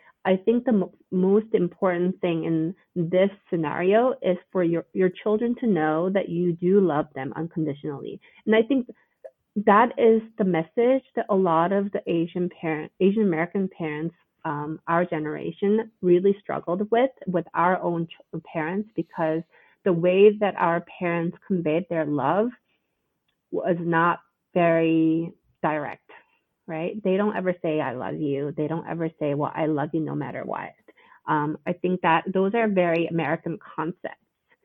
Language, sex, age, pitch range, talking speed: English, female, 30-49, 165-205 Hz, 155 wpm